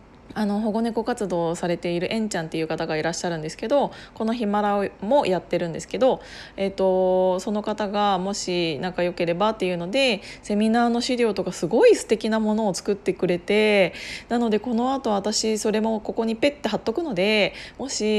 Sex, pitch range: female, 185-225 Hz